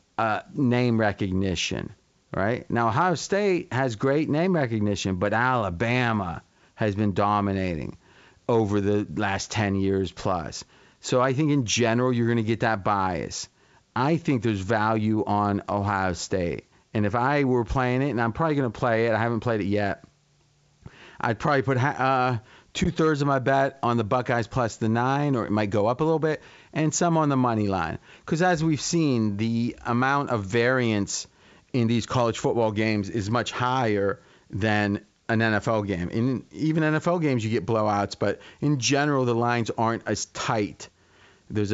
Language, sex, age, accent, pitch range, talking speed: English, male, 40-59, American, 105-135 Hz, 180 wpm